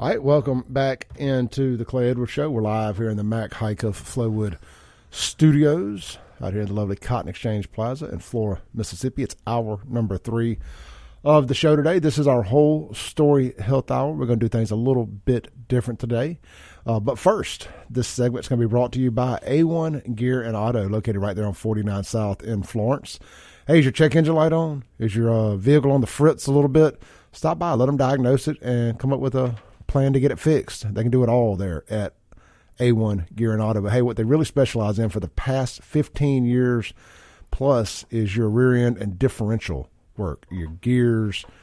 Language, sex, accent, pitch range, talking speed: English, male, American, 105-135 Hz, 210 wpm